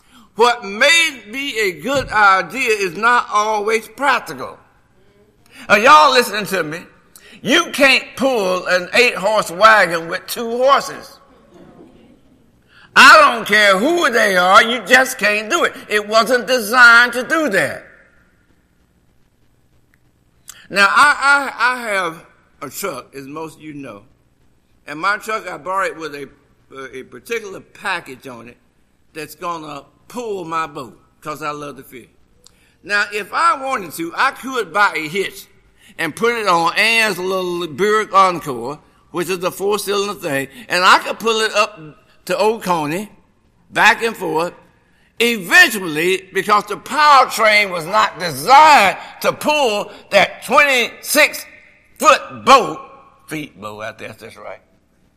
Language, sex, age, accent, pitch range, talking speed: English, male, 60-79, American, 170-255 Hz, 140 wpm